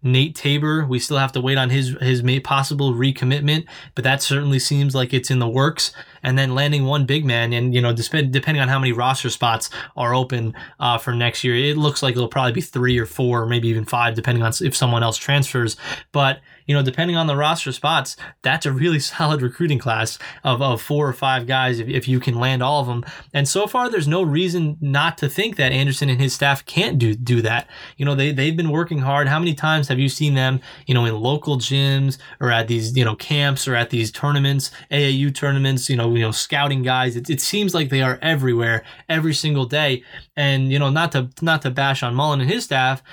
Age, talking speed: 20-39, 230 wpm